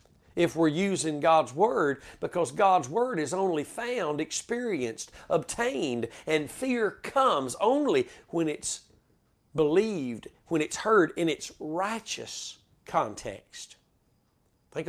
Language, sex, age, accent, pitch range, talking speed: English, male, 40-59, American, 160-220 Hz, 115 wpm